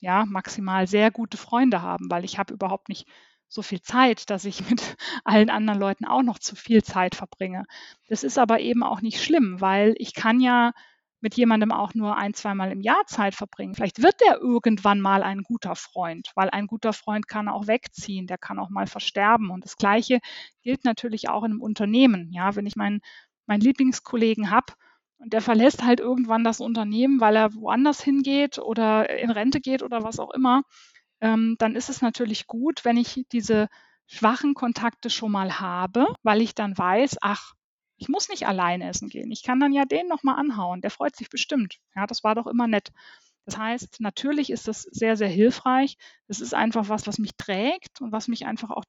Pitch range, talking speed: 205-250 Hz, 200 wpm